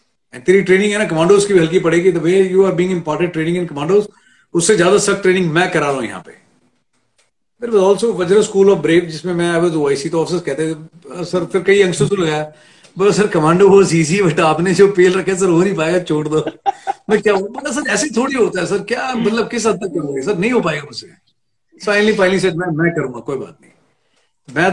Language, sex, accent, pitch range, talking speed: Hindi, male, native, 155-195 Hz, 120 wpm